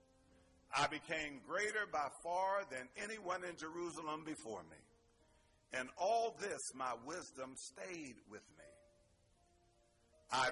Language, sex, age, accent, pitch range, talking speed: English, male, 50-69, American, 115-185 Hz, 115 wpm